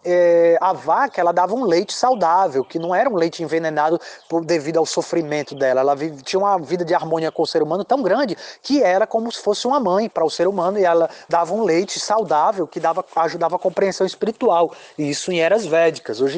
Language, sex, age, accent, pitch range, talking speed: Portuguese, male, 20-39, Brazilian, 150-190 Hz, 215 wpm